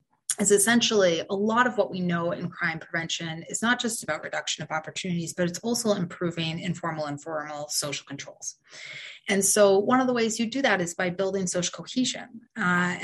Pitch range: 170-205 Hz